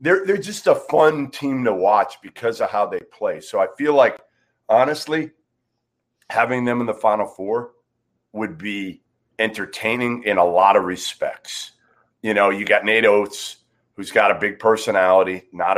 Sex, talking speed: male, 165 wpm